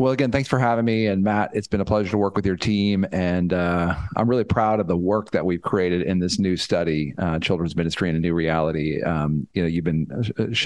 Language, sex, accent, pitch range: English, male, American, 85-105 Hz